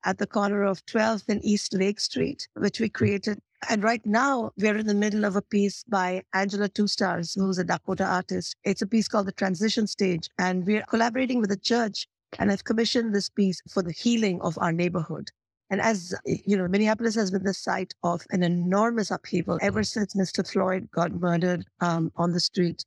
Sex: female